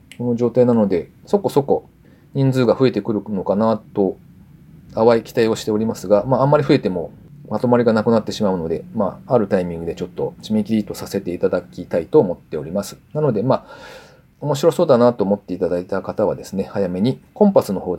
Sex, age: male, 40-59